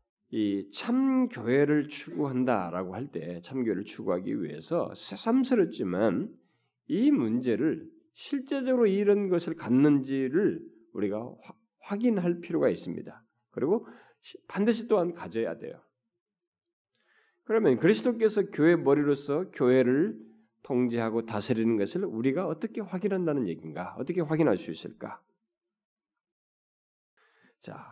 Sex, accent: male, native